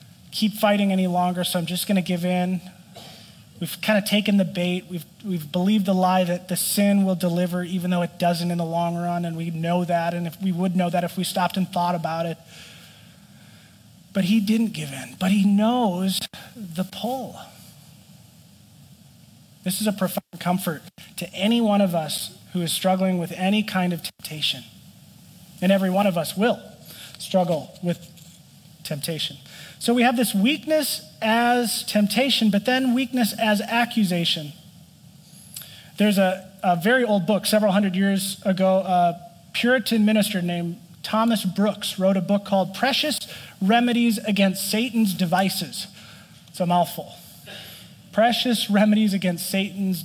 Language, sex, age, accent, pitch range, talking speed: English, male, 30-49, American, 175-210 Hz, 160 wpm